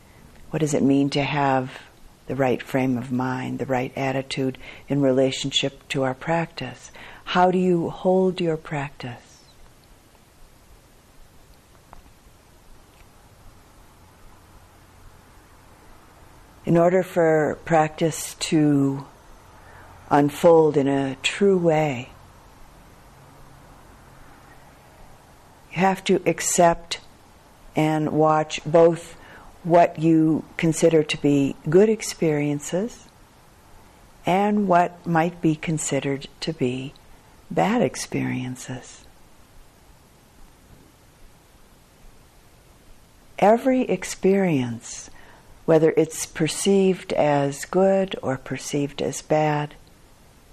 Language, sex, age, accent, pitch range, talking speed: English, female, 60-79, American, 130-170 Hz, 80 wpm